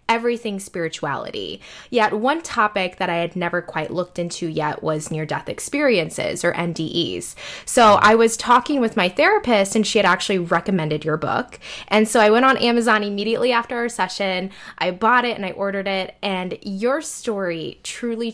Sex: female